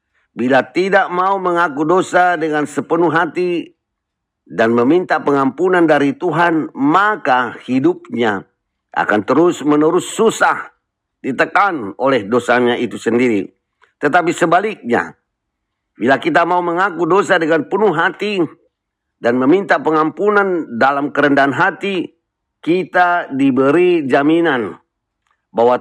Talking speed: 100 wpm